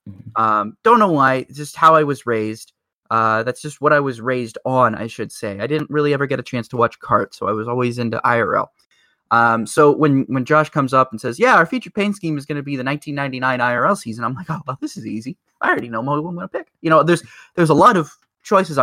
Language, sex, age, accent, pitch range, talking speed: English, male, 20-39, American, 120-150 Hz, 260 wpm